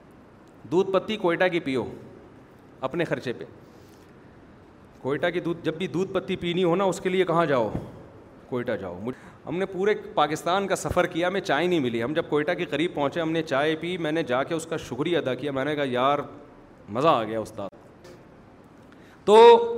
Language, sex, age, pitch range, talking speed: Urdu, male, 40-59, 145-185 Hz, 195 wpm